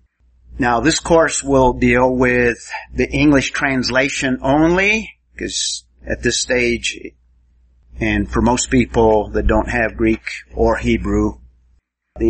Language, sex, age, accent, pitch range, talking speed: English, male, 50-69, American, 105-145 Hz, 120 wpm